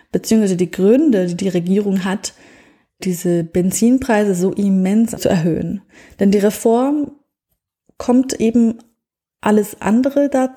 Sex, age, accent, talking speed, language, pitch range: female, 30-49, German, 120 wpm, German, 185-235 Hz